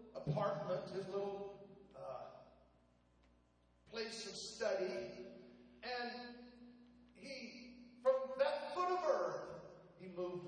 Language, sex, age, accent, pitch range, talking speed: English, male, 50-69, American, 135-225 Hz, 90 wpm